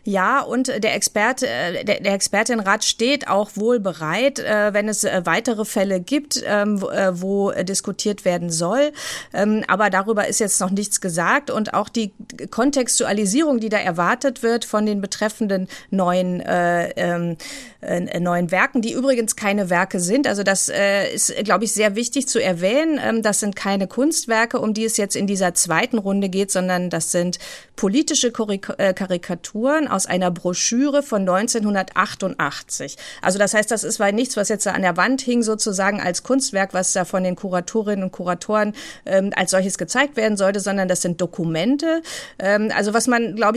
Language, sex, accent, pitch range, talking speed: German, female, German, 185-235 Hz, 160 wpm